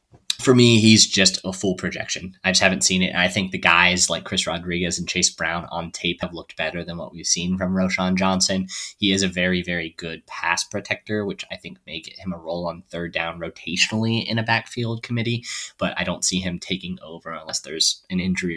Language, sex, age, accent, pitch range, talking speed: English, male, 20-39, American, 90-100 Hz, 225 wpm